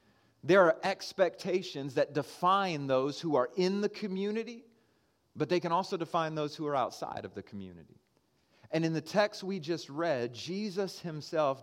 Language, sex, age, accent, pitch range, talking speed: English, male, 30-49, American, 135-180 Hz, 165 wpm